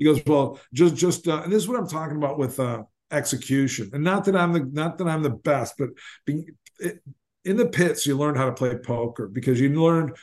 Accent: American